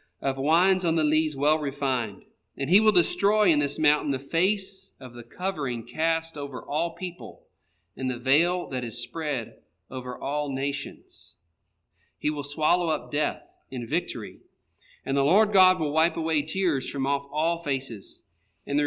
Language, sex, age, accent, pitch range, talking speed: English, male, 40-59, American, 105-165 Hz, 170 wpm